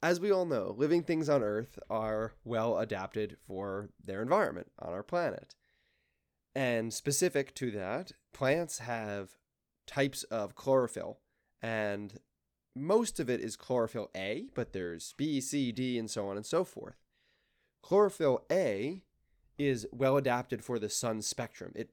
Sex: male